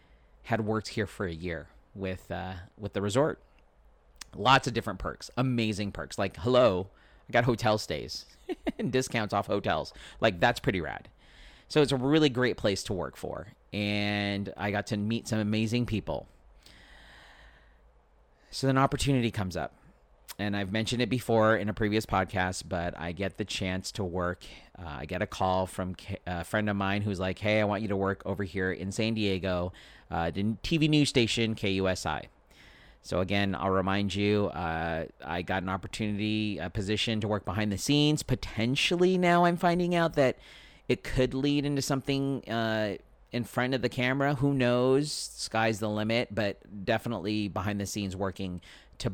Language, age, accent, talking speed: English, 40-59, American, 175 wpm